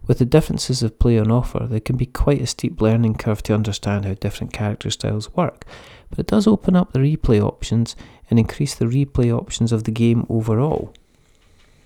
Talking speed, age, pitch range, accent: 195 wpm, 30-49, 105-125 Hz, British